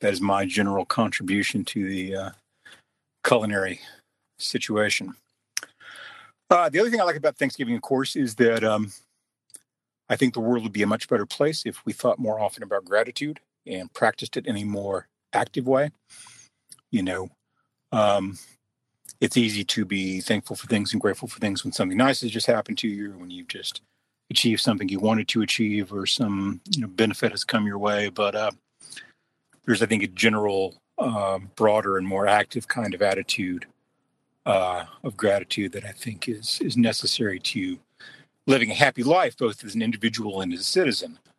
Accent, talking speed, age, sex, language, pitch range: American, 185 wpm, 40-59, male, English, 95-120 Hz